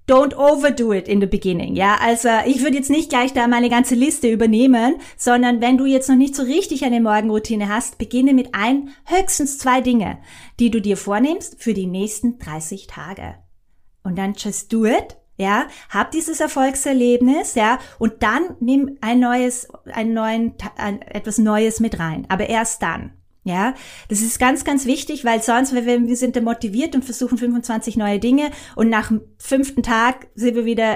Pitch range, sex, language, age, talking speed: 215-265 Hz, female, German, 20-39, 185 wpm